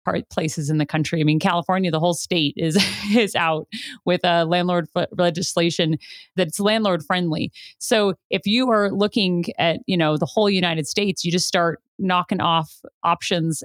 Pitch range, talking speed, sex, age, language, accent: 165-200 Hz, 165 wpm, female, 30-49, English, American